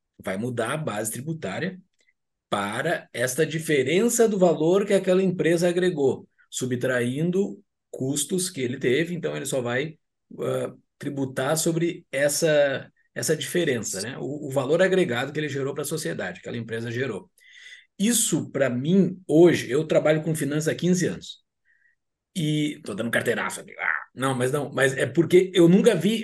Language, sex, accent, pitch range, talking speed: Portuguese, male, Brazilian, 130-180 Hz, 160 wpm